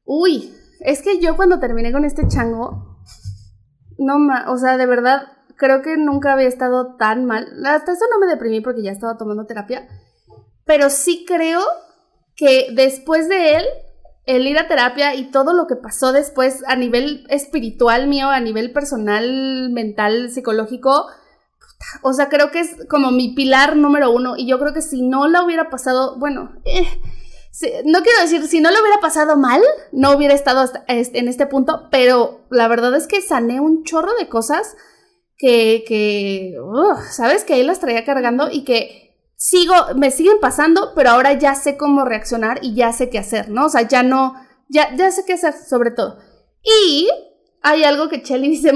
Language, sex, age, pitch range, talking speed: Spanish, female, 20-39, 245-305 Hz, 180 wpm